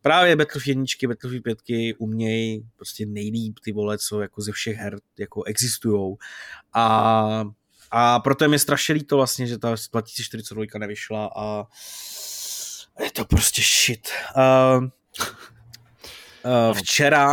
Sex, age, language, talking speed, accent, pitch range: male, 20-39, Czech, 125 wpm, native, 110-140 Hz